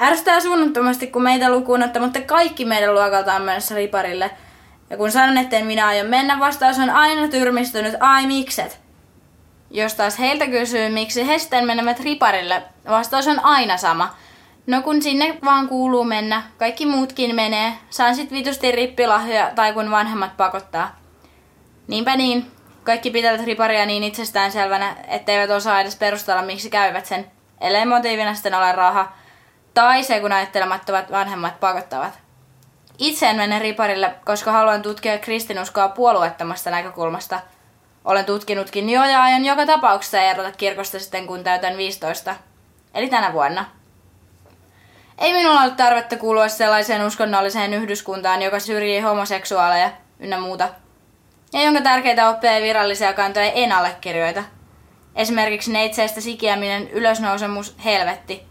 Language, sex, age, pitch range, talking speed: Finnish, female, 20-39, 190-245 Hz, 135 wpm